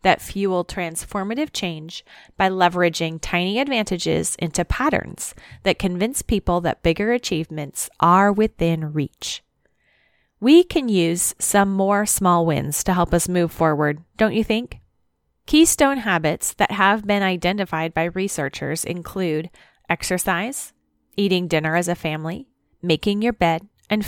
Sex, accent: female, American